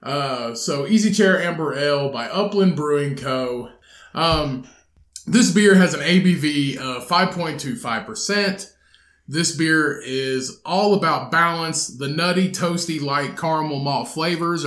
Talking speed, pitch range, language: 125 wpm, 135-185 Hz, English